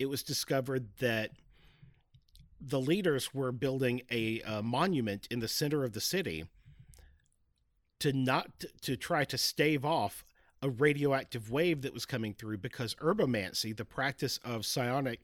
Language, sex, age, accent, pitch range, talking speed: English, male, 50-69, American, 110-140 Hz, 145 wpm